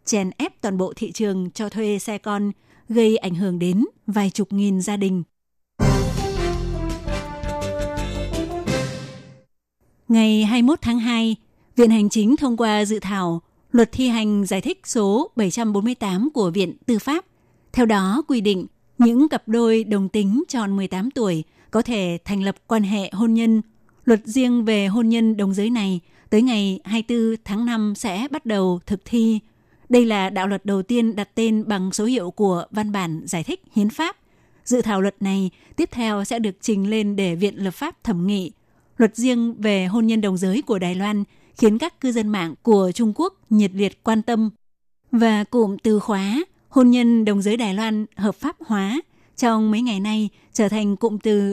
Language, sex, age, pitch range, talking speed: Vietnamese, female, 20-39, 195-235 Hz, 180 wpm